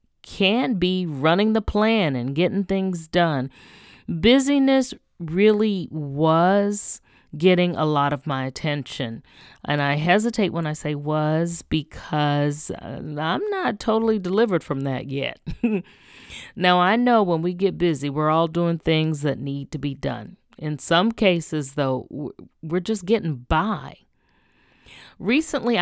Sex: female